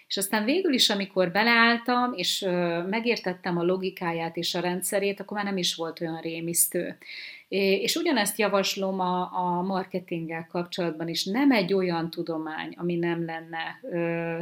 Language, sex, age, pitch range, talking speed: Hungarian, female, 30-49, 175-195 Hz, 160 wpm